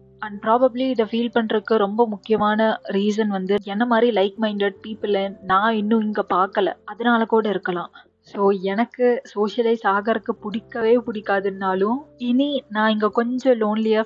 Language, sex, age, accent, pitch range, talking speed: Tamil, female, 20-39, native, 195-225 Hz, 130 wpm